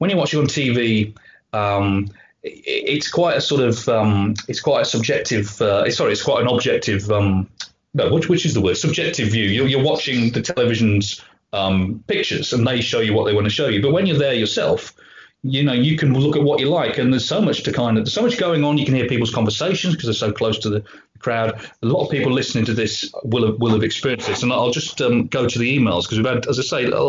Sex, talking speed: male, 255 wpm